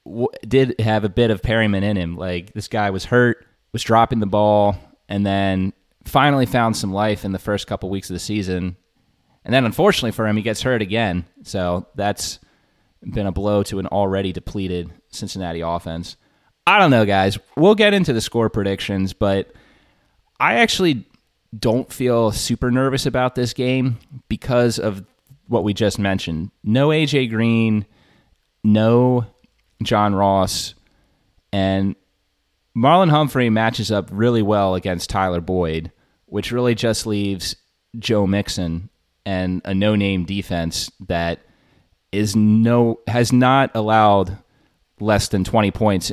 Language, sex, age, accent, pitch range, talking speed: English, male, 20-39, American, 95-120 Hz, 145 wpm